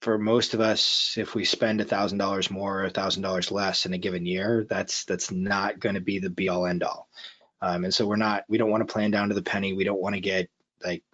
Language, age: English, 20-39